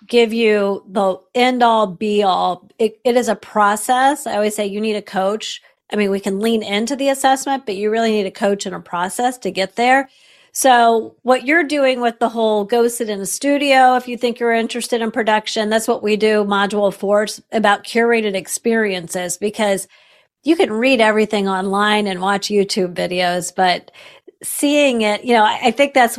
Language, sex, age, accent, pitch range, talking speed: English, female, 40-59, American, 200-255 Hz, 190 wpm